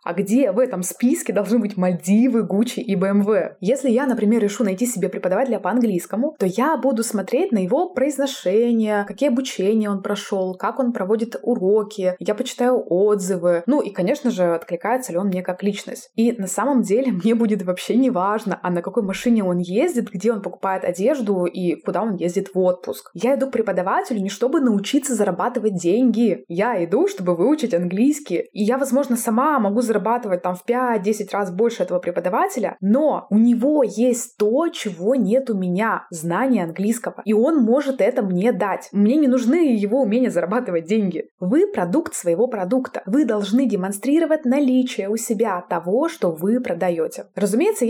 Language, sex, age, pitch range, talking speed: Russian, female, 20-39, 195-255 Hz, 175 wpm